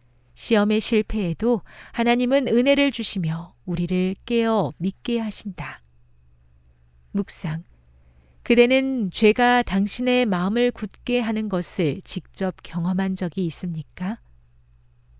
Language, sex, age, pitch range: Korean, female, 40-59, 160-235 Hz